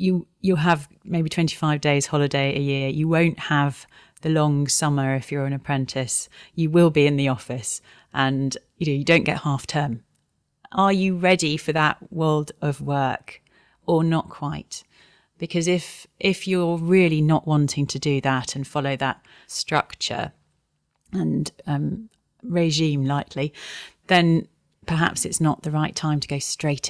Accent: British